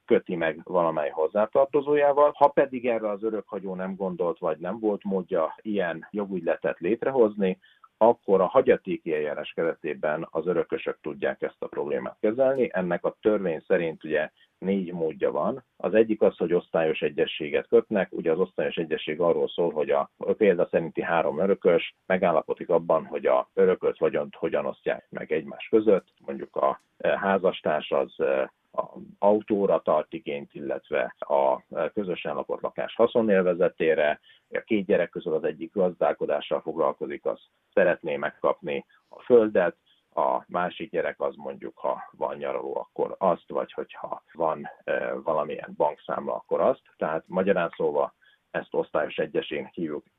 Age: 50-69